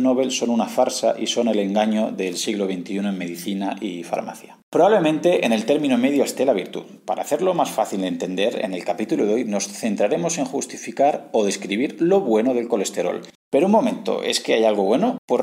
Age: 40-59